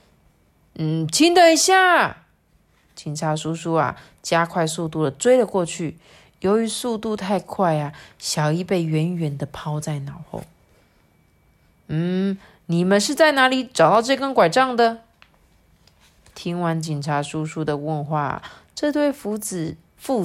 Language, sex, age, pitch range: Chinese, female, 20-39, 155-225 Hz